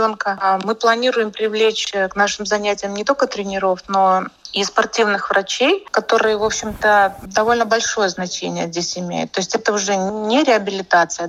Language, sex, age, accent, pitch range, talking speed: Russian, female, 30-49, native, 195-230 Hz, 145 wpm